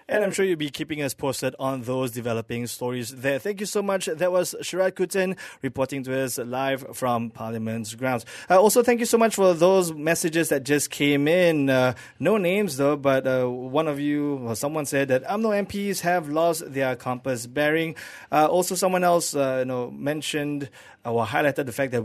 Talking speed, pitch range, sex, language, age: 205 wpm, 130-170 Hz, male, English, 20-39